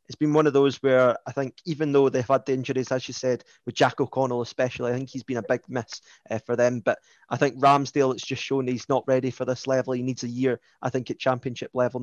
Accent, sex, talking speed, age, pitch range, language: British, male, 265 wpm, 20-39, 120-140 Hz, English